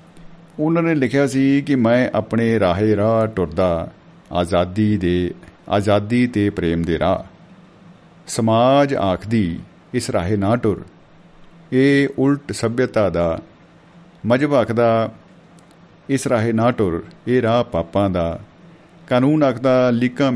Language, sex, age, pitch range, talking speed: Punjabi, male, 50-69, 100-145 Hz, 115 wpm